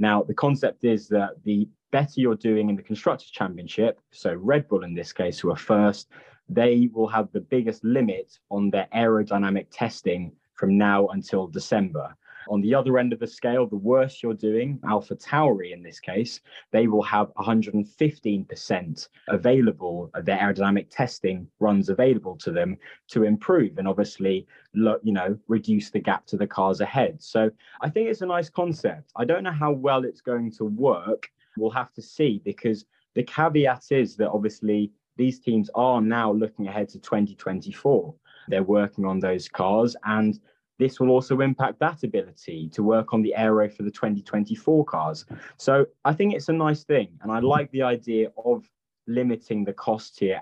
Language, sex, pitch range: English, male, 100-125 Hz